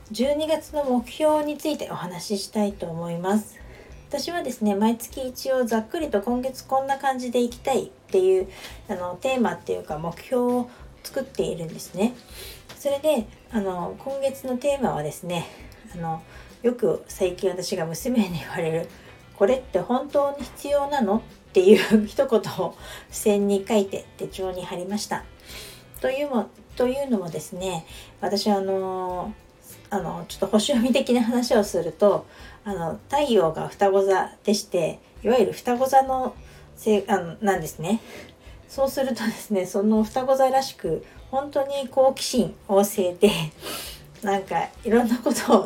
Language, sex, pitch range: Japanese, female, 190-255 Hz